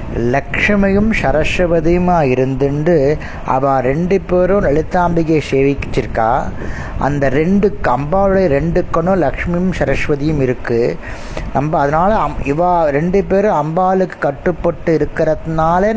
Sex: male